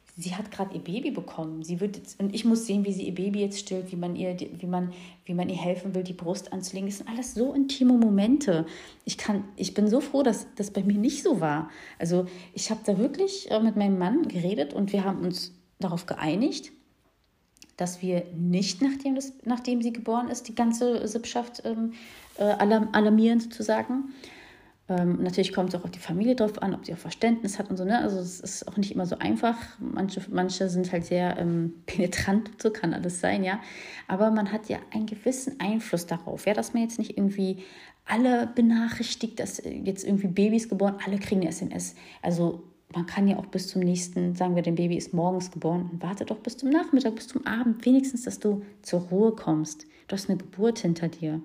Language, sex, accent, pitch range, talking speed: German, female, German, 180-230 Hz, 210 wpm